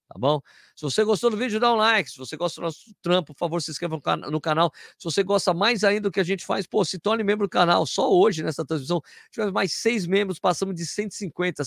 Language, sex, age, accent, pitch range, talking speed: Portuguese, male, 50-69, Brazilian, 135-185 Hz, 250 wpm